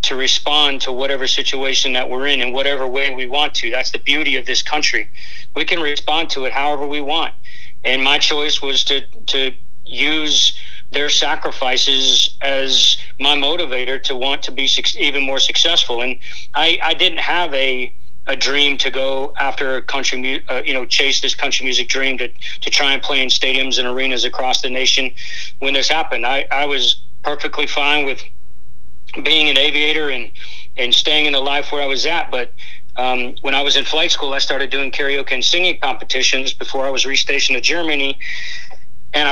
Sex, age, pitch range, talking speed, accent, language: male, 40-59, 130-145 Hz, 190 wpm, American, English